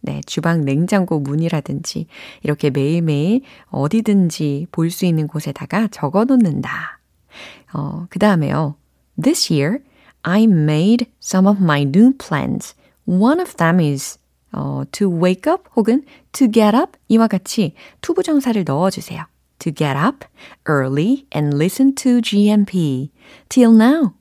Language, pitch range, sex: Korean, 155-235 Hz, female